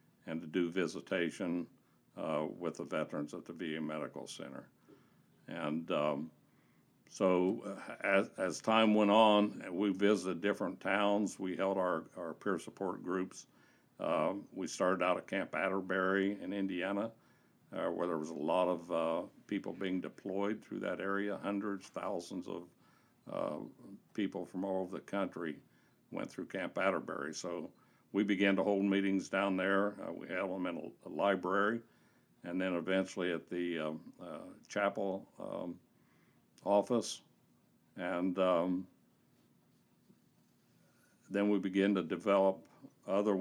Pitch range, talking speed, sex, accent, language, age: 90-100 Hz, 140 wpm, male, American, English, 60-79